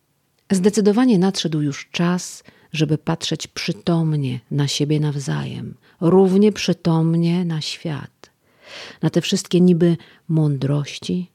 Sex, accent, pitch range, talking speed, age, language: female, native, 145-190 Hz, 100 wpm, 40-59, Polish